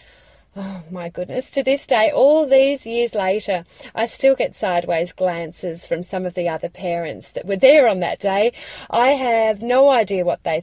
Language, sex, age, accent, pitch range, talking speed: English, female, 30-49, Australian, 175-235 Hz, 185 wpm